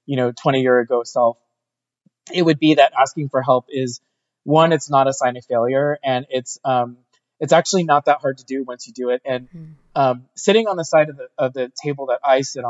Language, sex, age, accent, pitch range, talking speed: English, male, 20-39, American, 130-155 Hz, 230 wpm